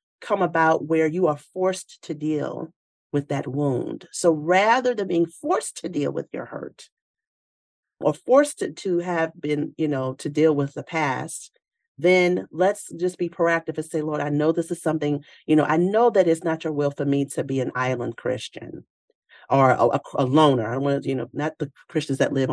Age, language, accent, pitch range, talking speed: 40-59, English, American, 140-175 Hz, 200 wpm